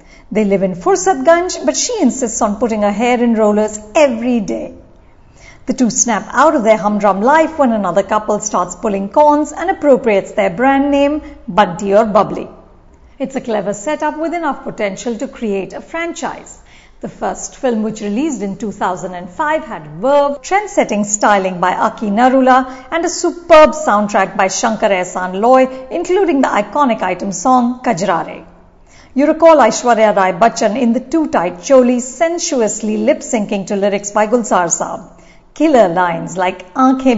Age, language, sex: 50-69, English, female